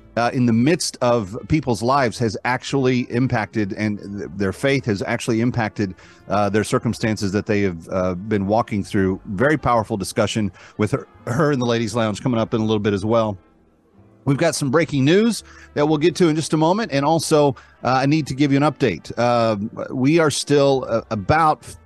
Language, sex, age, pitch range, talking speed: English, male, 40-59, 105-130 Hz, 205 wpm